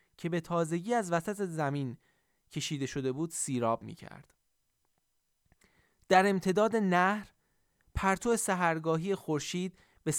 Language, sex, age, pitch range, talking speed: Persian, male, 30-49, 145-195 Hz, 110 wpm